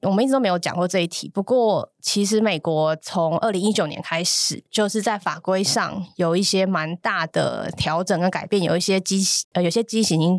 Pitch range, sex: 170-210 Hz, female